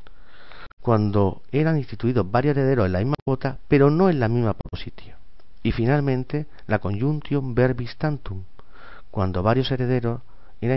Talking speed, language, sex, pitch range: 140 wpm, Spanish, male, 95-130 Hz